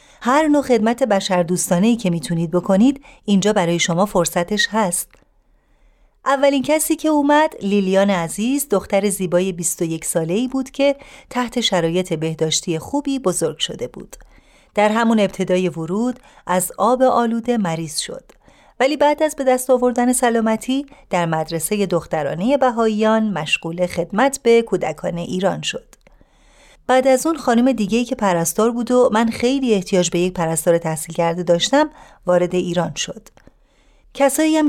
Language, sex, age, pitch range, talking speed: Persian, female, 30-49, 175-250 Hz, 140 wpm